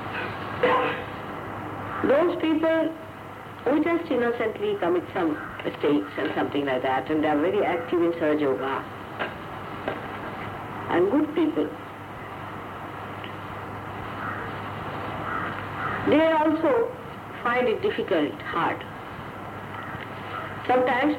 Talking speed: 85 wpm